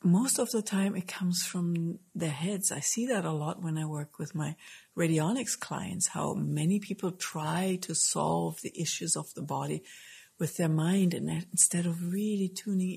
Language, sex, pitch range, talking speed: English, female, 165-195 Hz, 185 wpm